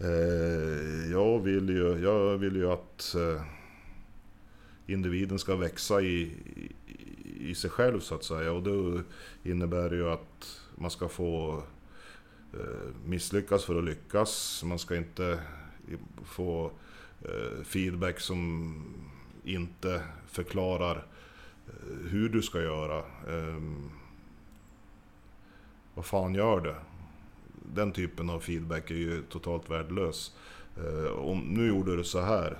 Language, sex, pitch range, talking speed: Swedish, male, 80-95 Hz, 110 wpm